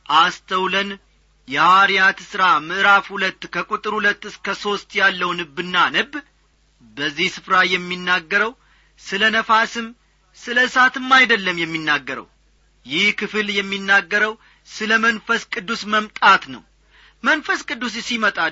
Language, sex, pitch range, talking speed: Amharic, male, 185-220 Hz, 105 wpm